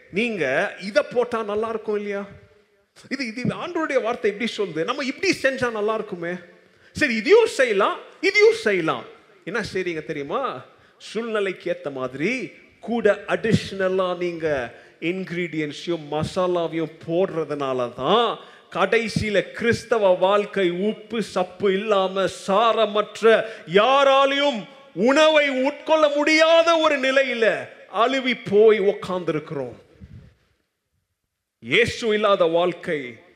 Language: Tamil